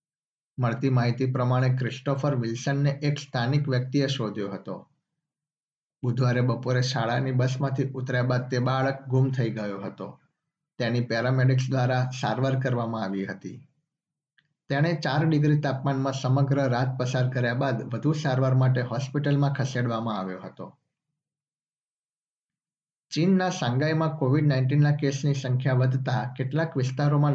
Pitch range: 125-145 Hz